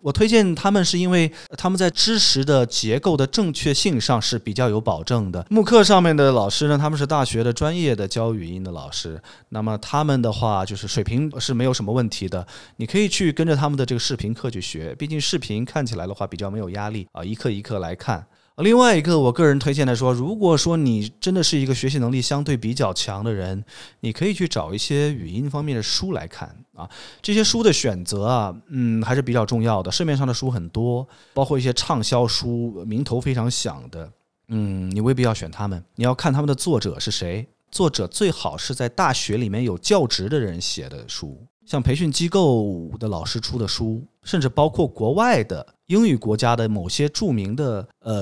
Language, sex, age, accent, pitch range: Chinese, male, 20-39, native, 110-150 Hz